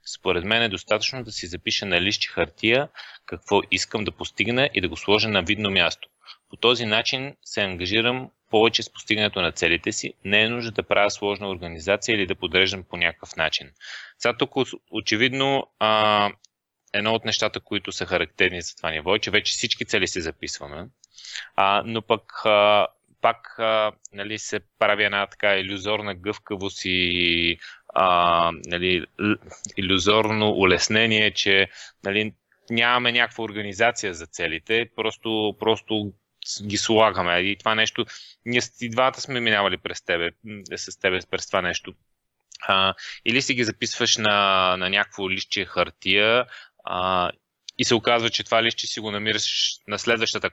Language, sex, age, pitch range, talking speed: Bulgarian, male, 30-49, 95-115 Hz, 145 wpm